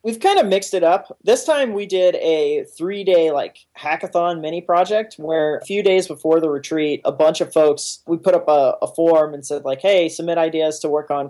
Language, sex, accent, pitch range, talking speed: English, male, American, 135-160 Hz, 230 wpm